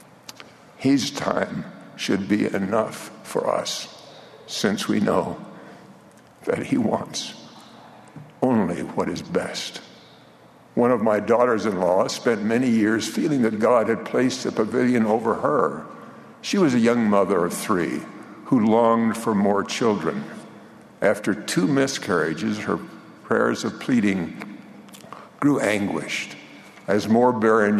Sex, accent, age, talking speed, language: male, American, 60-79, 125 wpm, English